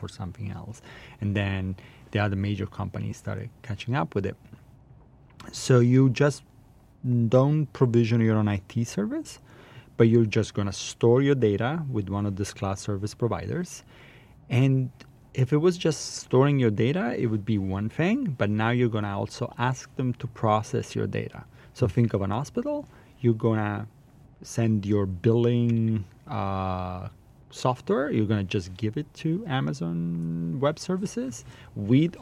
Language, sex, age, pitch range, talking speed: English, male, 30-49, 105-130 Hz, 160 wpm